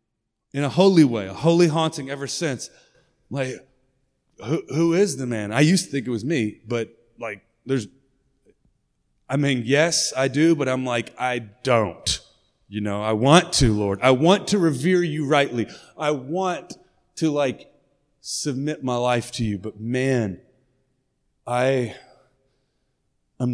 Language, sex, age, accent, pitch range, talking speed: English, male, 30-49, American, 125-165 Hz, 155 wpm